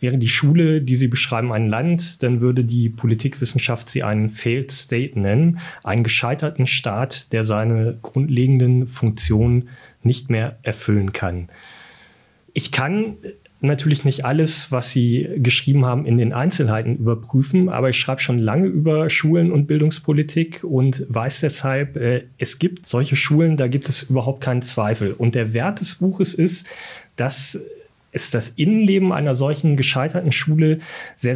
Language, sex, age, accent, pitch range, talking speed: German, male, 30-49, German, 120-150 Hz, 150 wpm